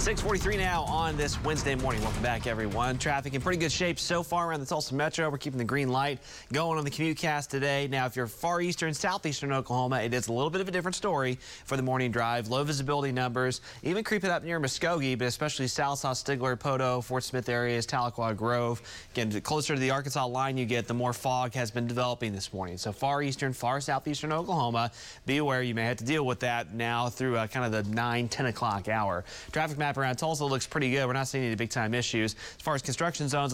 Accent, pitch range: American, 115-140 Hz